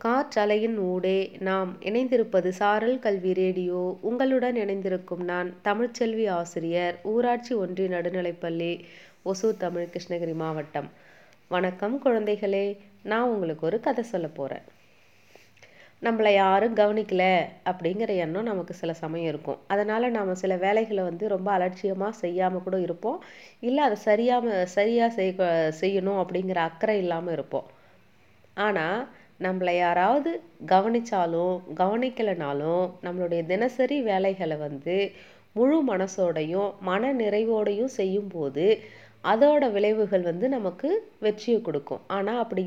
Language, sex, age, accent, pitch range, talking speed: Tamil, female, 30-49, native, 180-225 Hz, 110 wpm